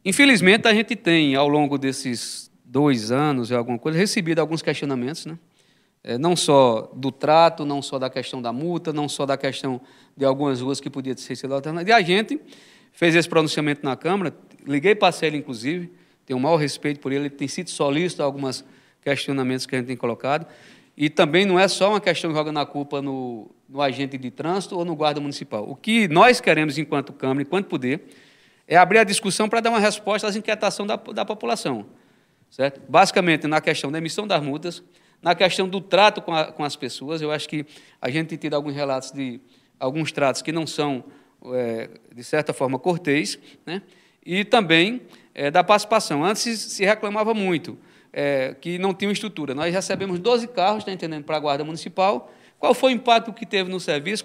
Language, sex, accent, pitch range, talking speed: Portuguese, male, Brazilian, 140-190 Hz, 190 wpm